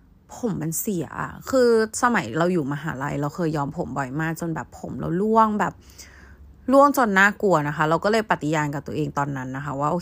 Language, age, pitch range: Thai, 20-39, 150-210 Hz